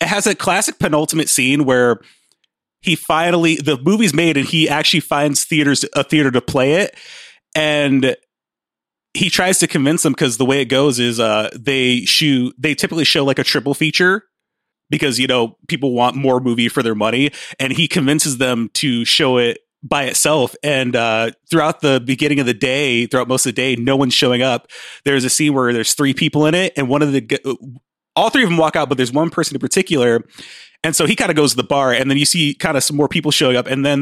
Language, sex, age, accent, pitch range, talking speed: English, male, 30-49, American, 130-155 Hz, 225 wpm